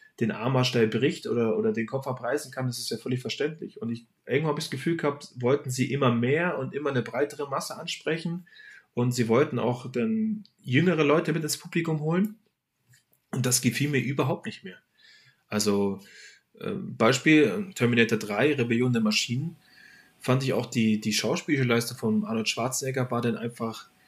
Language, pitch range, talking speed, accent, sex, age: German, 115-160 Hz, 175 wpm, German, male, 30-49